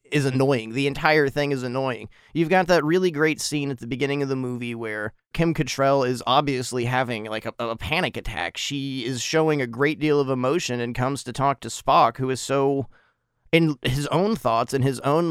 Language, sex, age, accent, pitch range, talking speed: English, male, 30-49, American, 115-140 Hz, 210 wpm